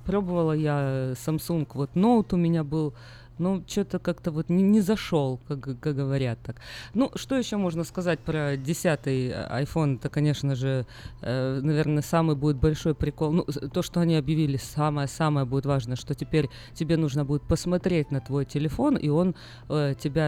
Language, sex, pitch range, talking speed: Russian, female, 135-170 Hz, 170 wpm